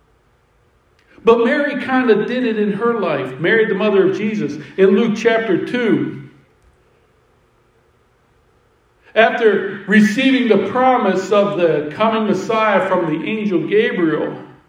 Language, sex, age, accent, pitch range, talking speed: English, male, 60-79, American, 165-235 Hz, 125 wpm